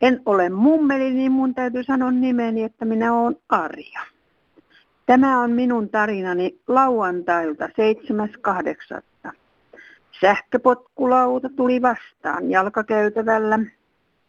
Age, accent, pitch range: 60-79, native, 190-255 Hz